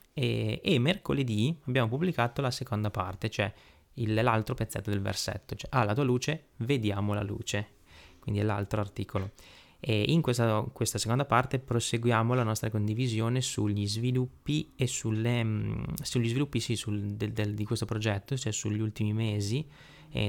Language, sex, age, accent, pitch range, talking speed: Italian, male, 20-39, native, 105-130 Hz, 165 wpm